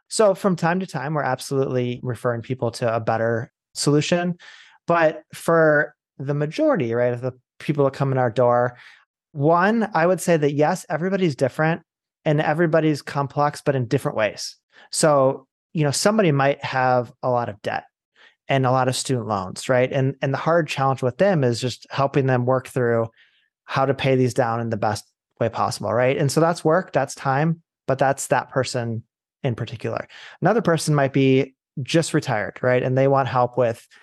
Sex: male